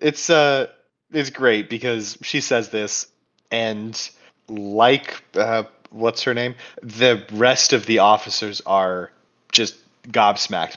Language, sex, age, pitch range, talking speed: English, male, 30-49, 110-150 Hz, 125 wpm